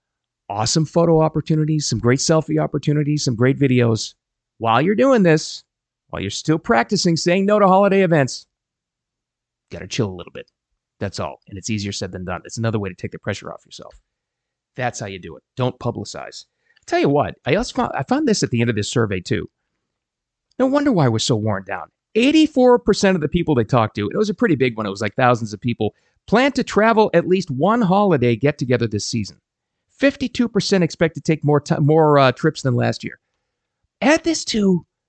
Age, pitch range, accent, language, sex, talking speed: 30-49, 120-195 Hz, American, English, male, 210 wpm